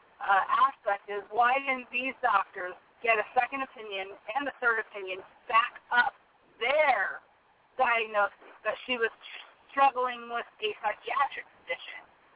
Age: 30-49